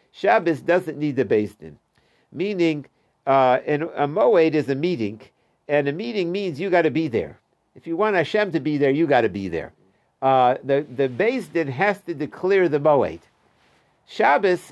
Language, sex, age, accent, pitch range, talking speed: English, male, 60-79, American, 140-185 Hz, 185 wpm